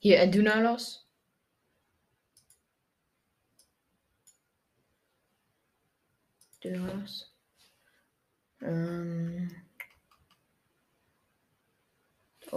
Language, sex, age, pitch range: German, female, 20-39, 170-230 Hz